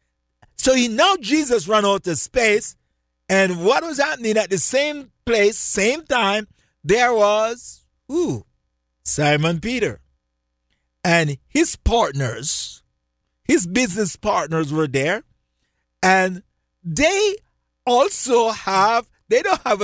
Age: 50-69